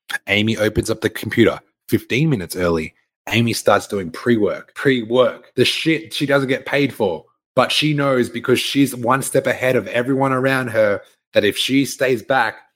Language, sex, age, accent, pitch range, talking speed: English, male, 20-39, Australian, 105-145 Hz, 175 wpm